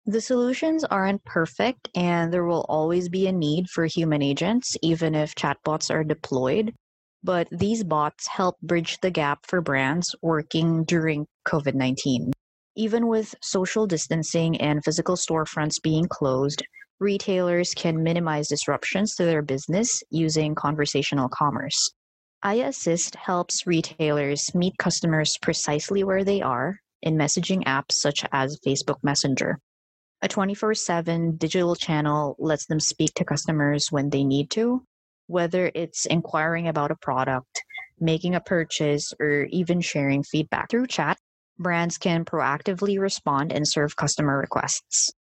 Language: English